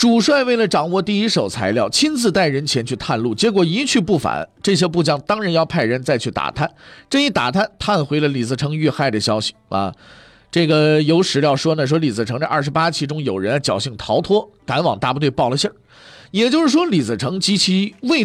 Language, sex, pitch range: Chinese, male, 135-205 Hz